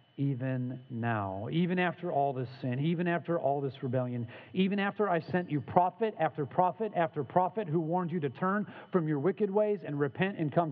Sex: male